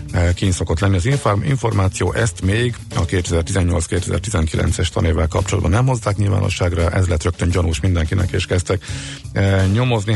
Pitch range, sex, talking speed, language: 90-105 Hz, male, 130 wpm, Hungarian